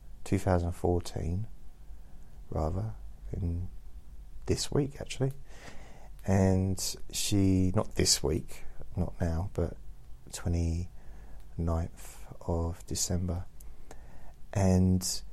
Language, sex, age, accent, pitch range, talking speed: English, male, 40-59, British, 80-95 Hz, 70 wpm